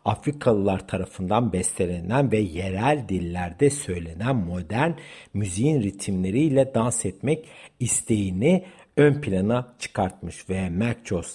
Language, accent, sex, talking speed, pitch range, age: Turkish, native, male, 95 wpm, 95-135 Hz, 60-79